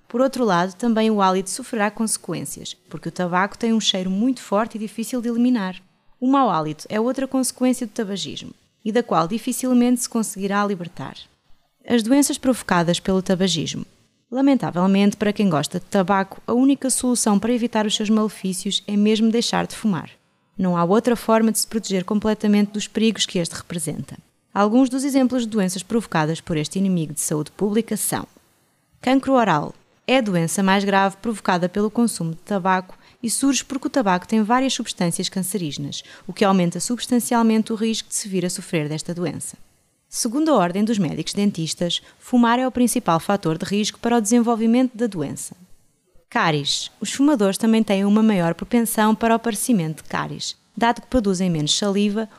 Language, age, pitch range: Portuguese, 20-39, 185-235 Hz